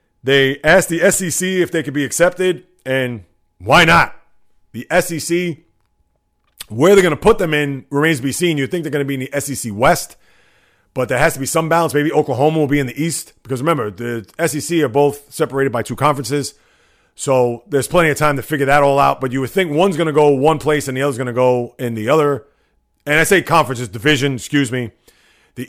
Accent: American